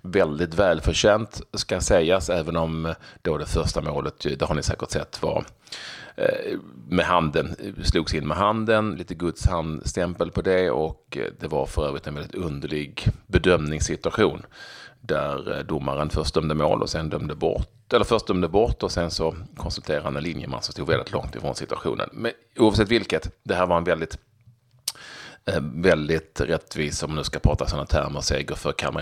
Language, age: Swedish, 30-49